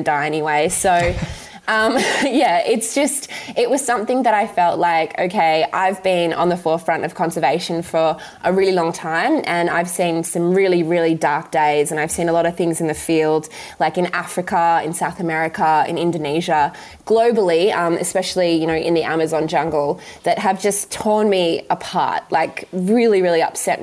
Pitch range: 160-190 Hz